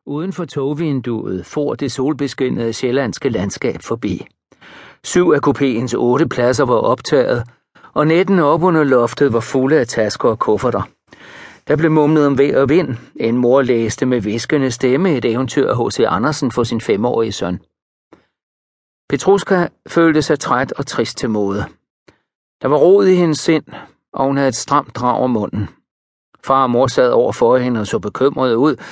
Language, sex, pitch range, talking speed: Danish, male, 120-150 Hz, 170 wpm